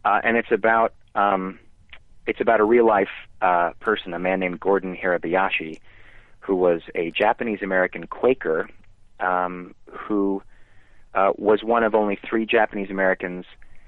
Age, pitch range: 30-49, 85-105 Hz